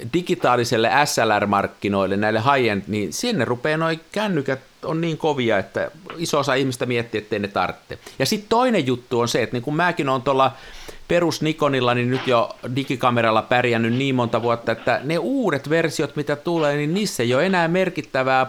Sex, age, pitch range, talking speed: male, 50-69, 110-155 Hz, 170 wpm